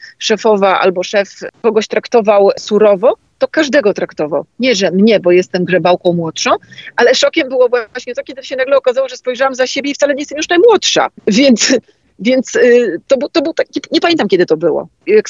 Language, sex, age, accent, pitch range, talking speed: Polish, female, 40-59, native, 195-280 Hz, 190 wpm